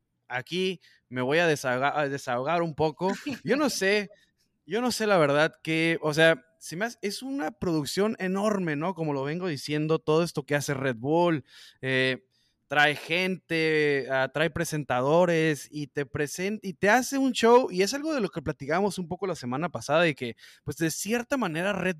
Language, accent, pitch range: Spanish, Mexican, 145-190 Hz